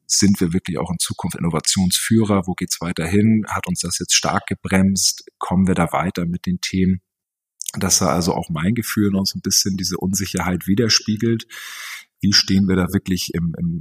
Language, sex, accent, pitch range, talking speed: German, male, German, 85-95 Hz, 195 wpm